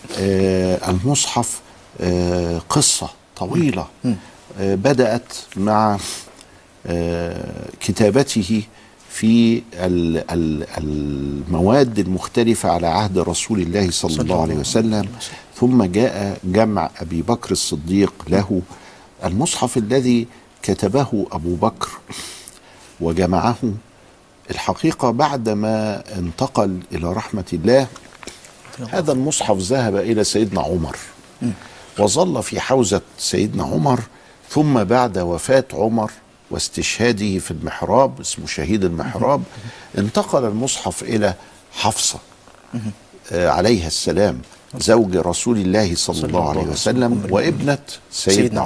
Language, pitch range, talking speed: Arabic, 90-115 Hz, 90 wpm